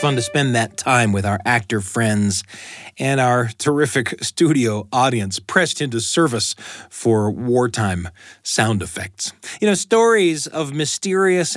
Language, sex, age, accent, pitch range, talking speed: English, male, 40-59, American, 100-140 Hz, 135 wpm